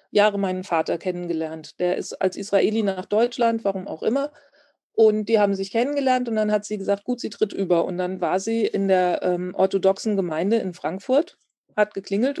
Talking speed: 195 wpm